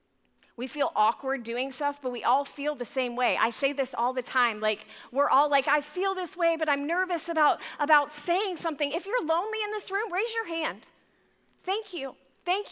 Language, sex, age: English, female, 30-49